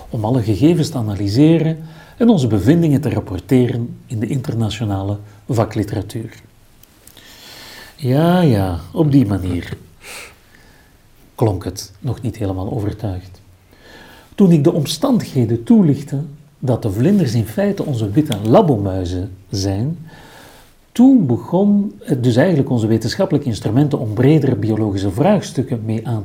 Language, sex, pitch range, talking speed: Dutch, male, 105-150 Hz, 120 wpm